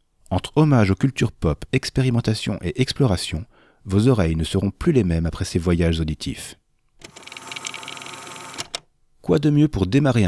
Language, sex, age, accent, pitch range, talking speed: French, male, 40-59, French, 85-115 Hz, 140 wpm